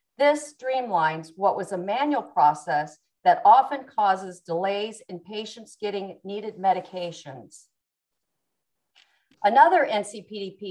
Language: English